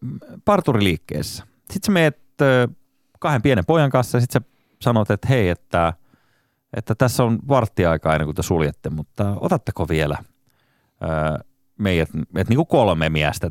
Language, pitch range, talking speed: Finnish, 90-135 Hz, 130 wpm